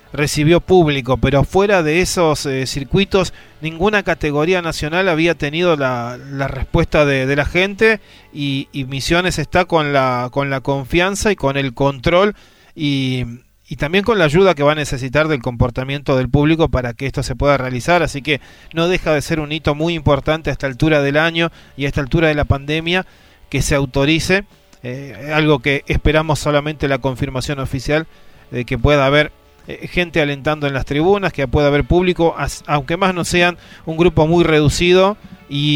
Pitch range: 140-170 Hz